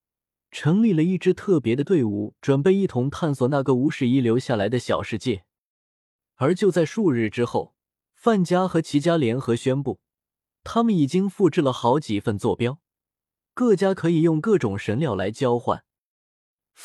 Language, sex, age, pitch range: Chinese, male, 20-39, 120-175 Hz